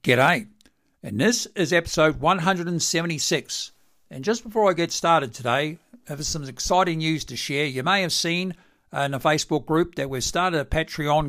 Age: 60-79